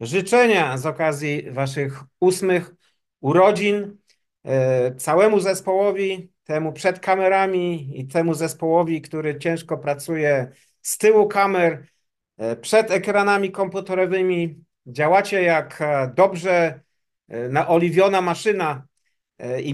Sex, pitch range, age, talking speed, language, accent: male, 150-185 Hz, 50-69, 90 wpm, Polish, native